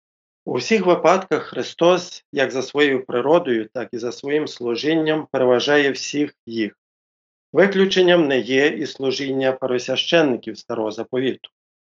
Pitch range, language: 125-155 Hz, Ukrainian